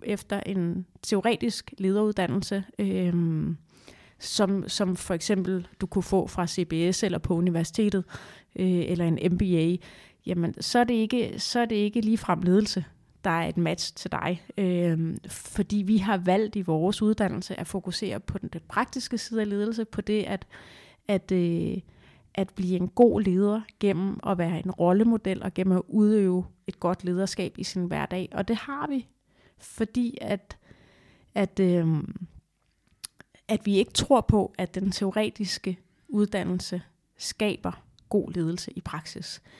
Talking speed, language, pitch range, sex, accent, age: 145 wpm, Danish, 180-210 Hz, female, native, 30-49